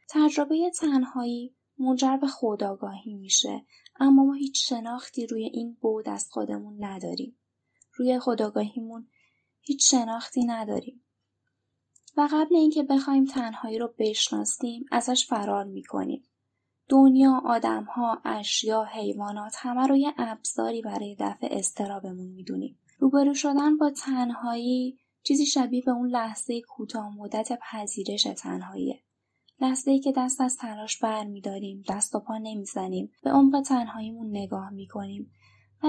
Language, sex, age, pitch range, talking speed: Persian, female, 10-29, 205-265 Hz, 125 wpm